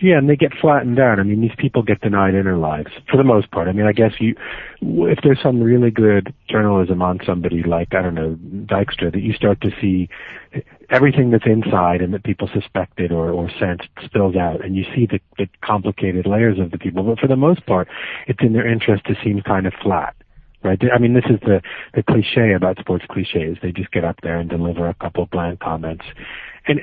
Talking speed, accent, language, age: 225 wpm, American, English, 40-59